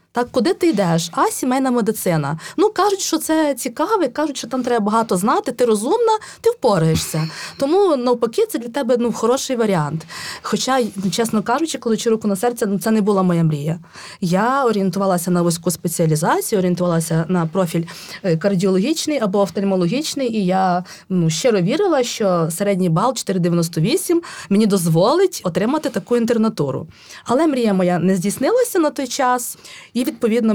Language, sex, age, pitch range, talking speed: Ukrainian, female, 20-39, 185-250 Hz, 155 wpm